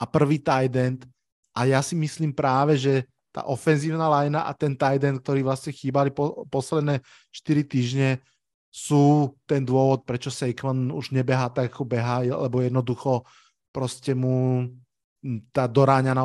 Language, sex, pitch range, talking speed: Slovak, male, 130-145 Hz, 140 wpm